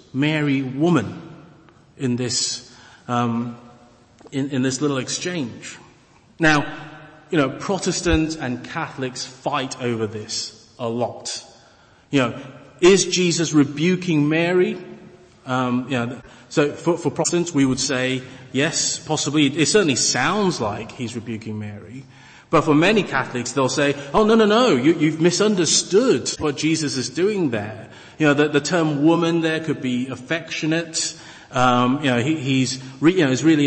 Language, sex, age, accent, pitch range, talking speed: English, male, 30-49, British, 125-165 Hz, 150 wpm